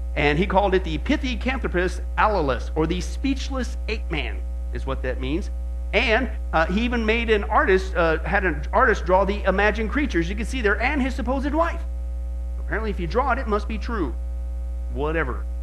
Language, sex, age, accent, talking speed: English, male, 50-69, American, 190 wpm